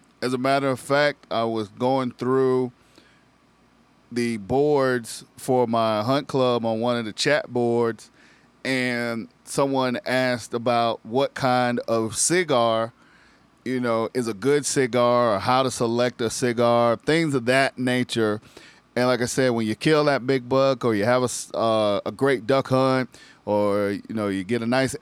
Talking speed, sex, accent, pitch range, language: 170 wpm, male, American, 120-140 Hz, English